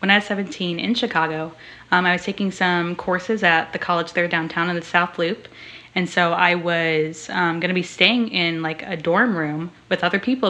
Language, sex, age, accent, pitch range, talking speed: English, female, 20-39, American, 165-180 Hz, 215 wpm